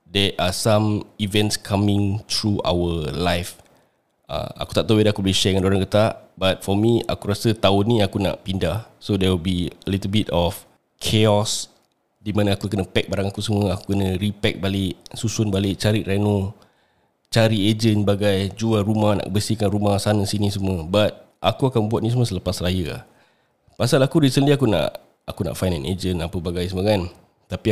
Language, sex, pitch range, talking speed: Malay, male, 95-110 Hz, 195 wpm